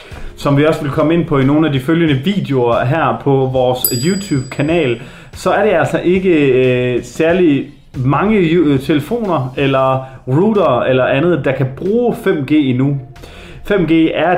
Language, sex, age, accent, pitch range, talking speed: Danish, male, 30-49, native, 125-160 Hz, 150 wpm